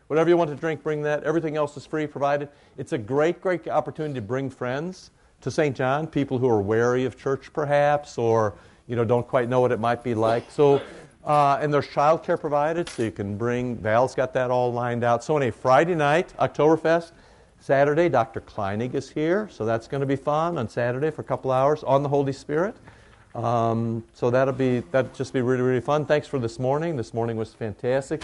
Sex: male